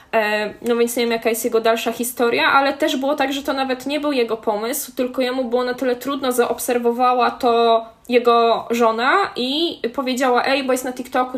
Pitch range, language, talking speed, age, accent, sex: 235-290 Hz, Polish, 195 wpm, 10-29, native, female